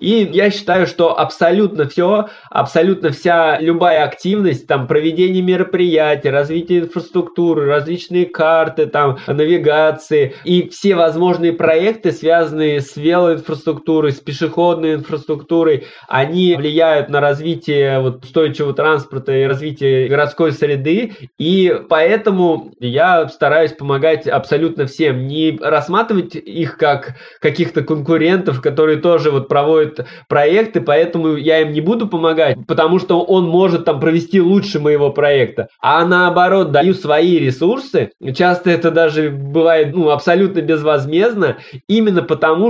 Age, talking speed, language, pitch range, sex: 20-39, 120 wpm, Russian, 150-180 Hz, male